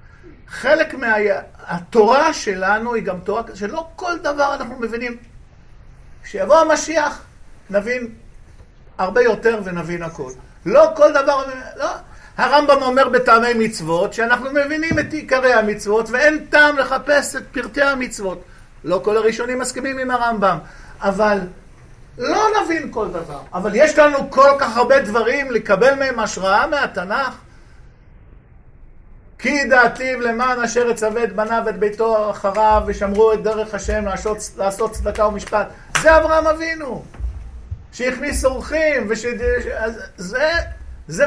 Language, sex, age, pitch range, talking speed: English, male, 50-69, 190-275 Hz, 120 wpm